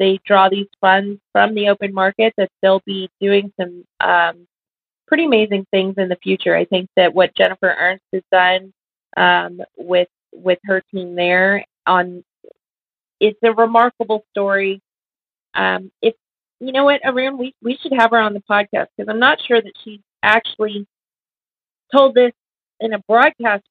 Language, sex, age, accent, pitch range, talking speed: English, female, 30-49, American, 190-230 Hz, 160 wpm